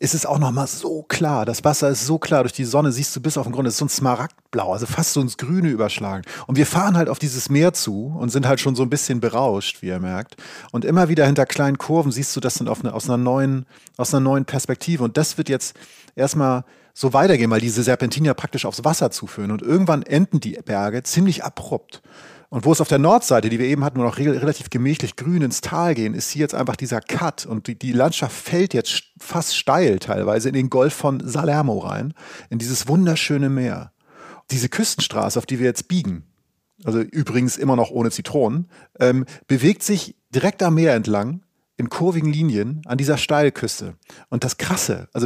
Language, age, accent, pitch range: German, 30-49, German, 125-155 Hz